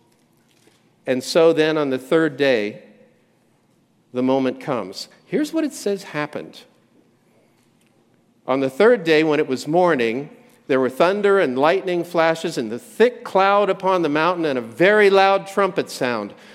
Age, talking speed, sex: 50-69, 150 wpm, male